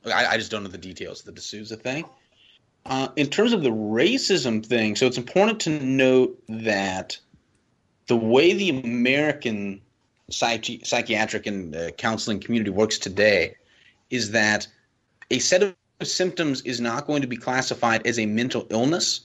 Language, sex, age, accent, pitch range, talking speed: English, male, 30-49, American, 105-130 Hz, 160 wpm